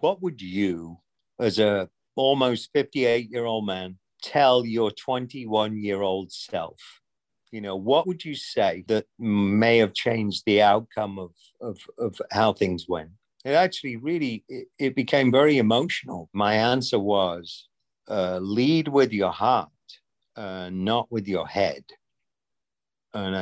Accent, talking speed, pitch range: British, 130 wpm, 95-120 Hz